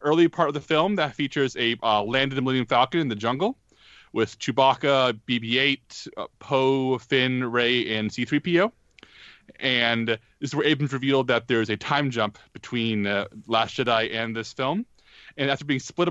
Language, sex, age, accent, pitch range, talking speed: English, male, 30-49, American, 115-140 Hz, 180 wpm